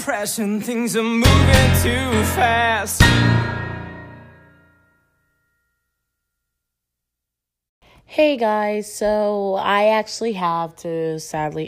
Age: 20-39